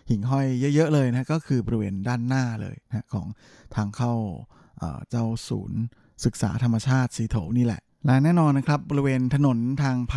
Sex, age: male, 20-39